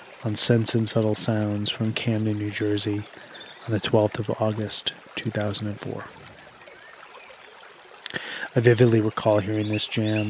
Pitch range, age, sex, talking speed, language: 105-115 Hz, 30-49, male, 120 wpm, English